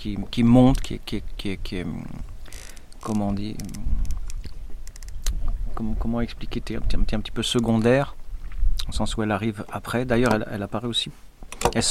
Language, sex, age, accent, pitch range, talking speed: French, male, 40-59, French, 95-115 Hz, 175 wpm